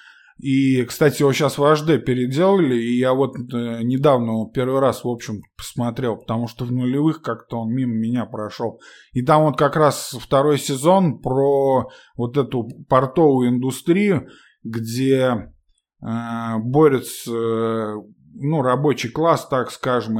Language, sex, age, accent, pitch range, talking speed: Russian, male, 20-39, native, 120-145 Hz, 130 wpm